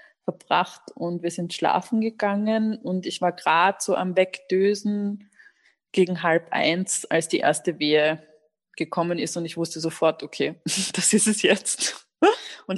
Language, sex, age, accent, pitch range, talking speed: German, female, 20-39, German, 165-195 Hz, 150 wpm